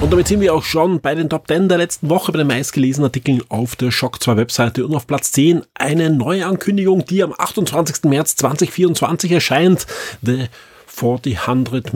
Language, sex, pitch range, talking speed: German, male, 120-150 Hz, 185 wpm